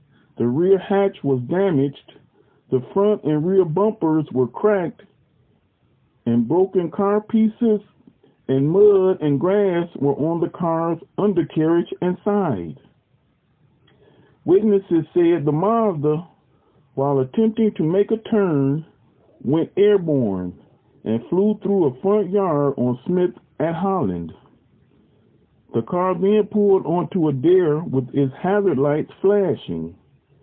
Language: English